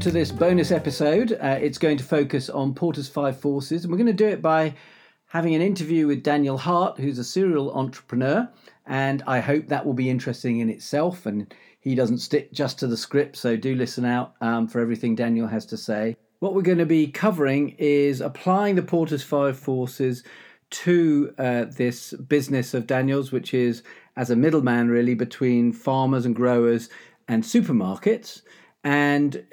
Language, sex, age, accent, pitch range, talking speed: English, male, 50-69, British, 125-160 Hz, 180 wpm